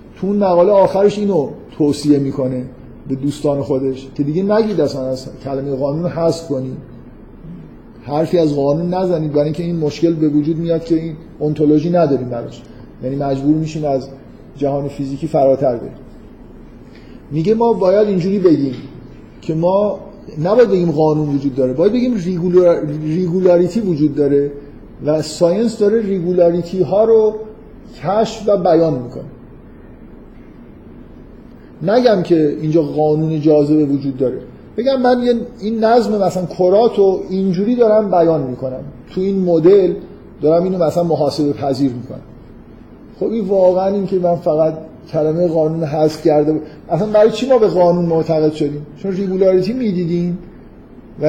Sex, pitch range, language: male, 150-190 Hz, Persian